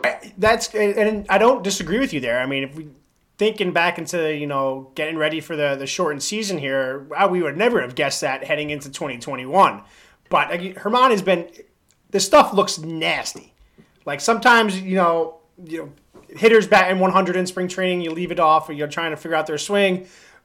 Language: English